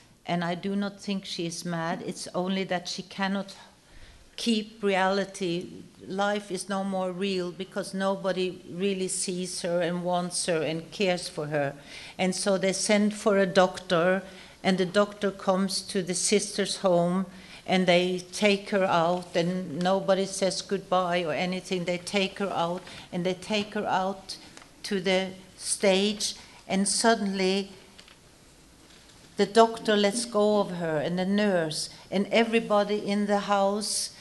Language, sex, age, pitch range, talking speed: English, female, 60-79, 180-200 Hz, 150 wpm